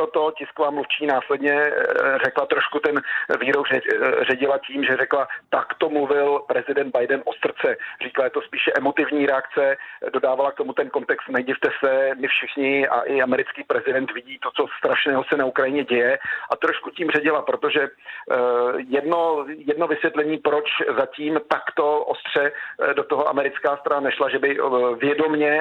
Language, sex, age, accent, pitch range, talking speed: Czech, male, 40-59, native, 135-155 Hz, 155 wpm